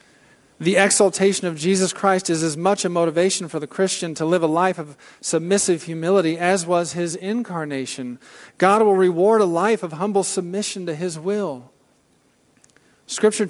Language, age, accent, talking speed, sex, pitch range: English, 40-59, American, 160 wpm, male, 155-190 Hz